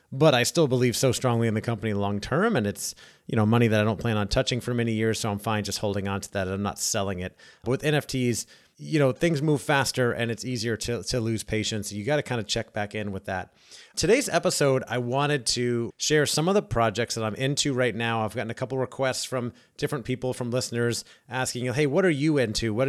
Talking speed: 250 wpm